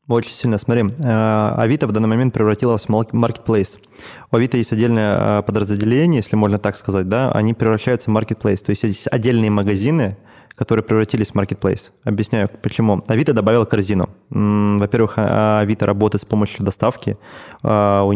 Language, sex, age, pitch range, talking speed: Russian, male, 20-39, 105-120 Hz, 150 wpm